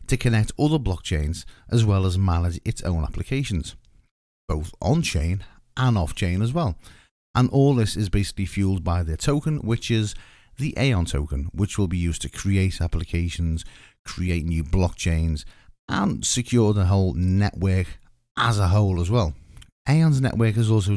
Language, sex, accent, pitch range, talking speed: English, male, British, 85-115 Hz, 165 wpm